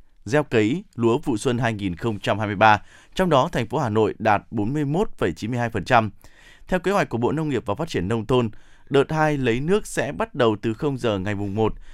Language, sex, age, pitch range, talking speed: Vietnamese, male, 20-39, 110-150 Hz, 195 wpm